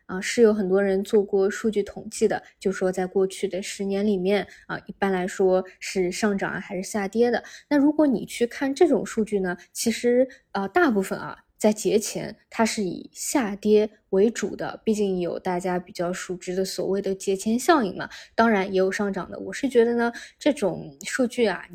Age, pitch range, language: 20-39, 190-235 Hz, Chinese